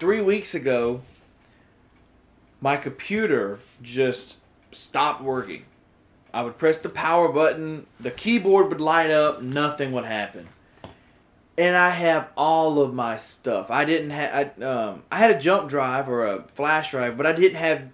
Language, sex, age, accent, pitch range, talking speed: English, male, 30-49, American, 125-170 Hz, 155 wpm